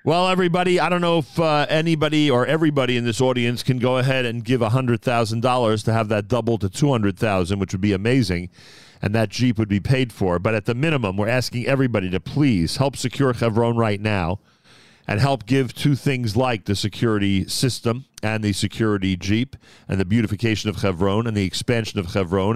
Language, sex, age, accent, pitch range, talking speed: English, male, 40-59, American, 105-125 Hz, 195 wpm